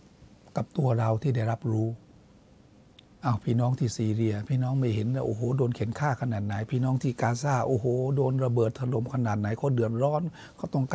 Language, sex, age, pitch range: Thai, male, 60-79, 120-140 Hz